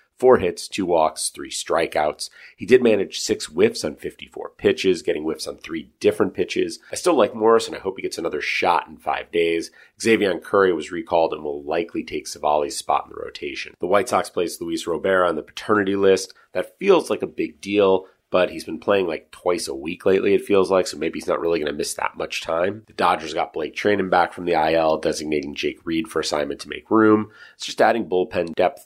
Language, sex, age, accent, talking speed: English, male, 30-49, American, 225 wpm